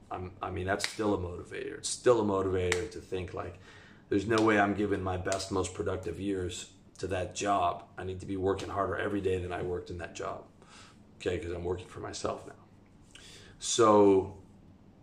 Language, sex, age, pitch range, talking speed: English, male, 30-49, 90-100 Hz, 190 wpm